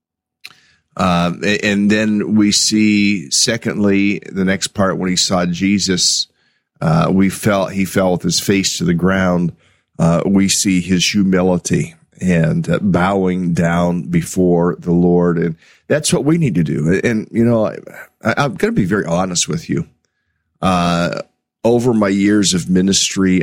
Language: English